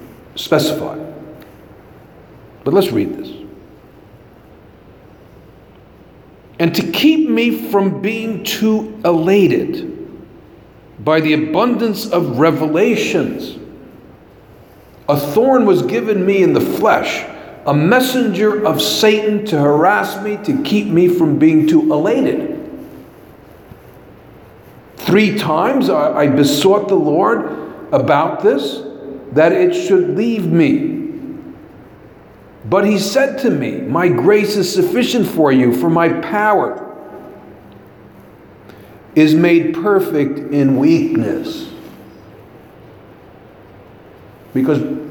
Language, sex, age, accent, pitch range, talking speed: English, male, 50-69, American, 150-225 Hz, 100 wpm